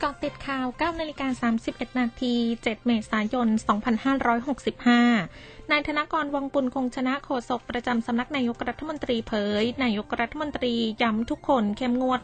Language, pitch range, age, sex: Thai, 220-260 Hz, 20-39, female